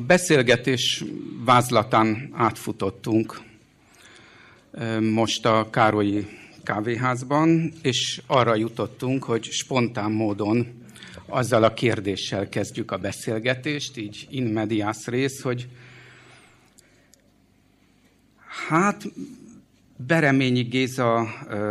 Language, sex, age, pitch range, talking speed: Hungarian, male, 50-69, 110-130 Hz, 75 wpm